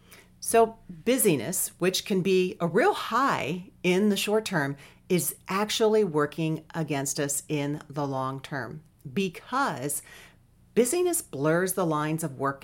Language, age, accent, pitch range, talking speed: English, 40-59, American, 155-200 Hz, 135 wpm